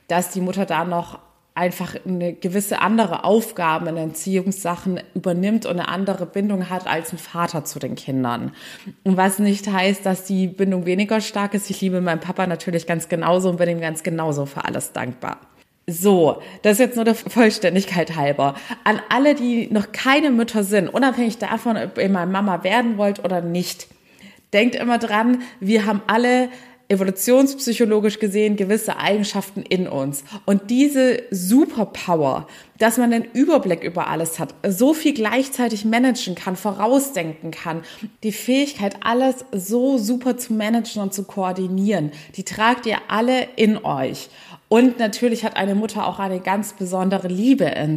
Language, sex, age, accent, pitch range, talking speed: German, female, 20-39, German, 180-225 Hz, 165 wpm